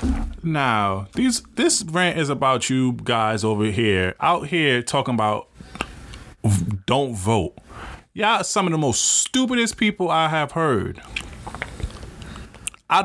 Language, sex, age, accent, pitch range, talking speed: English, male, 20-39, American, 120-160 Hz, 130 wpm